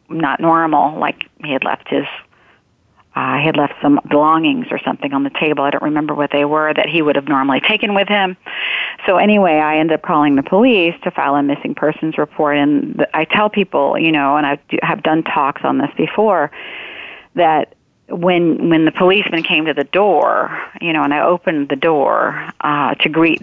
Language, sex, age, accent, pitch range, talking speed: English, female, 40-59, American, 145-175 Hz, 200 wpm